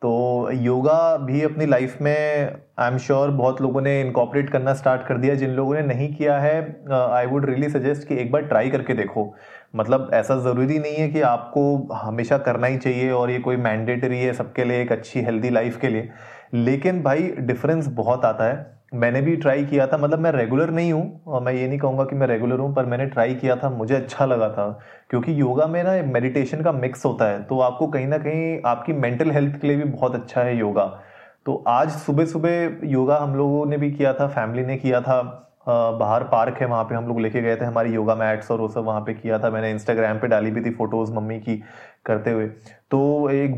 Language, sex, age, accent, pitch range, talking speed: Hindi, male, 30-49, native, 120-150 Hz, 220 wpm